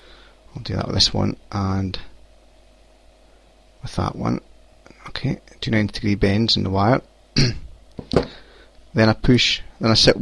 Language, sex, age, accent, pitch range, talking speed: English, male, 30-49, British, 100-115 Hz, 135 wpm